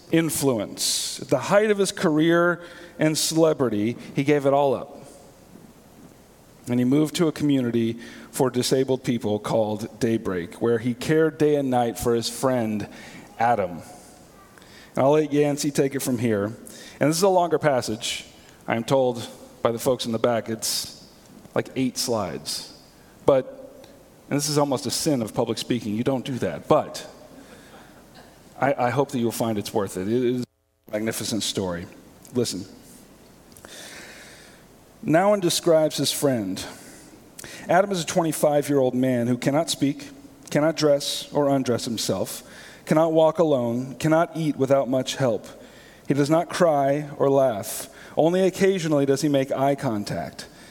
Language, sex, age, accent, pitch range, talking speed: English, male, 40-59, American, 120-155 Hz, 150 wpm